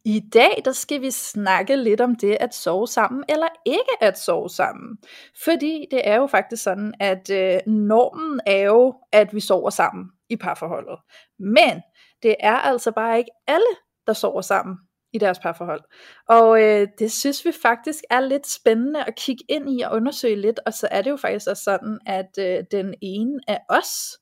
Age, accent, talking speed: 20-39, native, 185 wpm